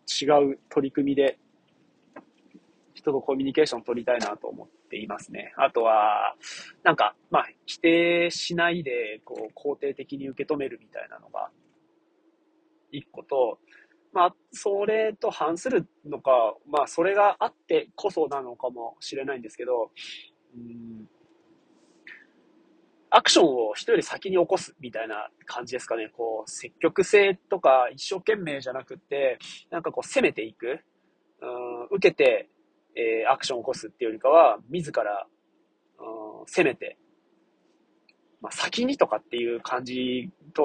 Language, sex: Japanese, male